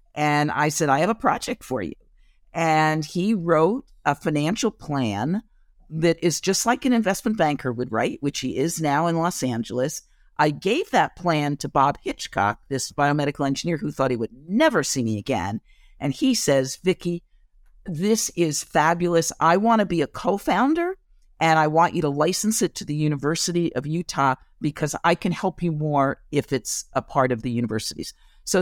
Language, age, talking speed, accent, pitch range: English, 50-69, 185 wpm, American, 140-175 Hz